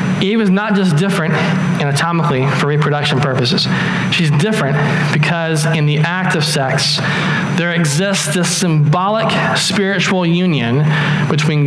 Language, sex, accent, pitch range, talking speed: English, male, American, 155-190 Hz, 125 wpm